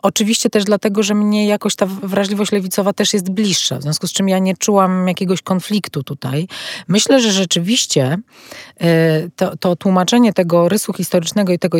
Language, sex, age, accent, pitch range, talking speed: Polish, female, 30-49, native, 170-195 Hz, 170 wpm